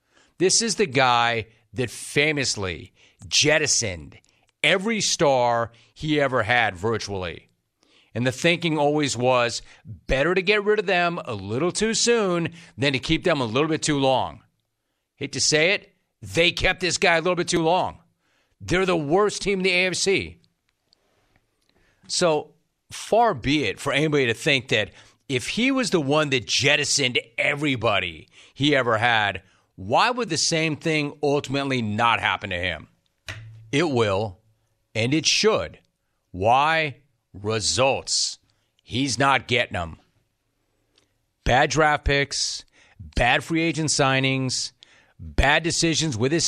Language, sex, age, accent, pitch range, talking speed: English, male, 40-59, American, 110-155 Hz, 140 wpm